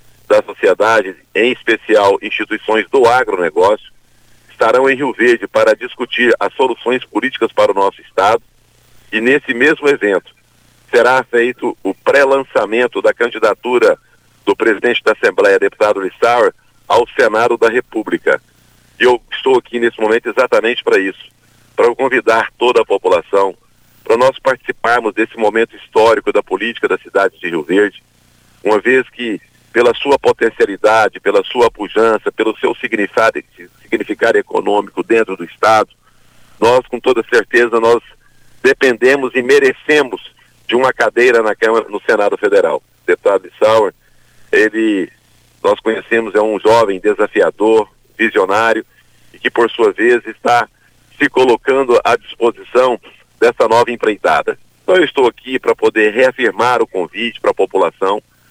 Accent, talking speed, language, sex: Brazilian, 140 wpm, Portuguese, male